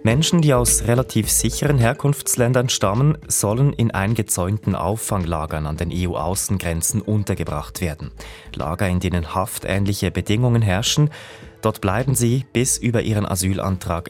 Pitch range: 90-120 Hz